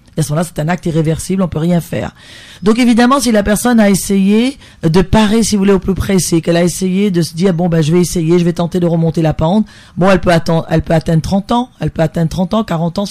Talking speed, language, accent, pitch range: 275 wpm, French, French, 165-200 Hz